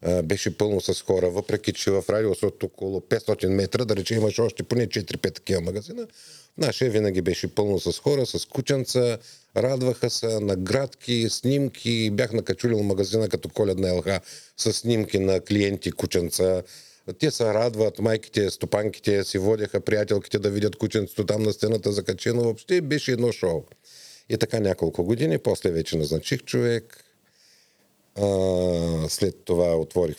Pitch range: 85-110 Hz